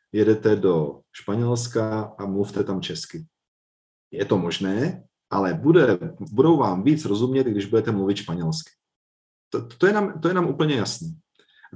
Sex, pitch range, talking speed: male, 100-135 Hz, 155 wpm